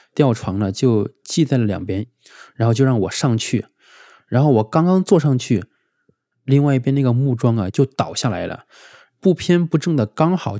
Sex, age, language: male, 20-39, Chinese